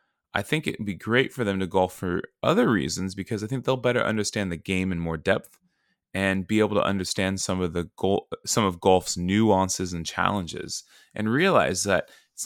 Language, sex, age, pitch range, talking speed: English, male, 20-39, 90-110 Hz, 205 wpm